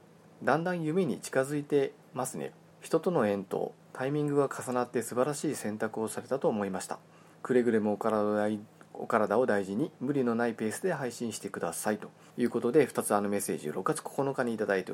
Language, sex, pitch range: Japanese, male, 100-145 Hz